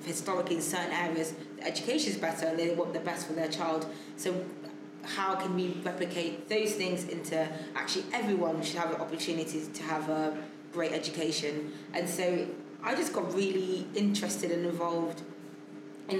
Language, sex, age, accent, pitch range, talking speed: English, female, 20-39, British, 155-175 Hz, 165 wpm